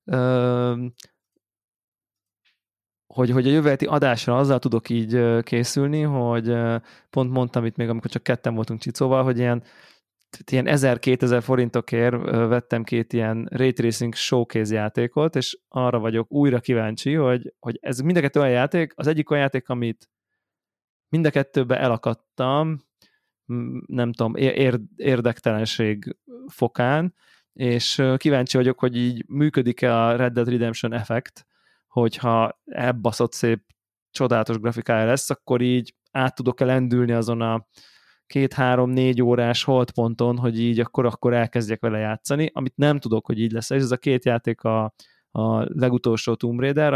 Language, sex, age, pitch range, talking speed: Hungarian, male, 20-39, 115-130 Hz, 135 wpm